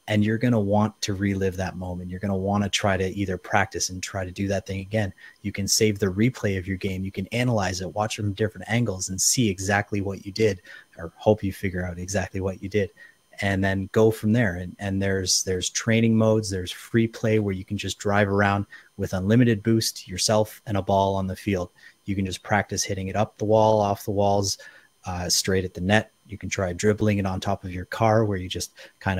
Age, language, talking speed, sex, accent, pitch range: 30-49, English, 240 wpm, male, American, 95-110 Hz